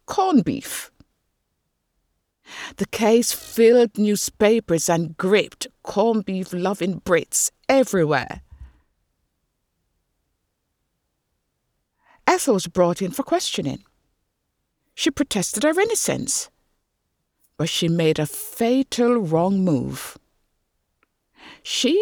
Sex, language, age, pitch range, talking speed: female, English, 60-79, 165-265 Hz, 85 wpm